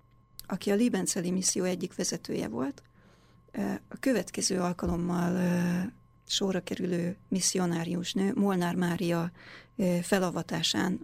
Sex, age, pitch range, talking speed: female, 30-49, 175-210 Hz, 85 wpm